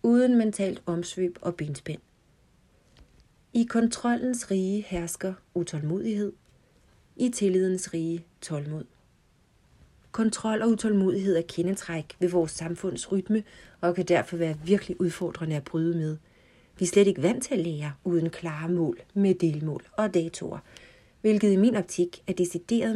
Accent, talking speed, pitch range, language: native, 135 wpm, 165-205 Hz, Danish